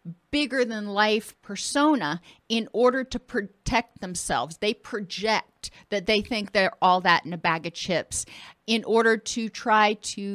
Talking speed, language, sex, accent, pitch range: 145 wpm, English, female, American, 205-260 Hz